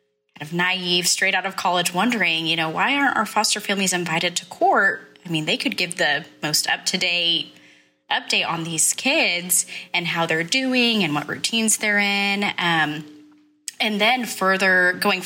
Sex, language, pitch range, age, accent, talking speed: female, English, 165-195 Hz, 10-29, American, 170 wpm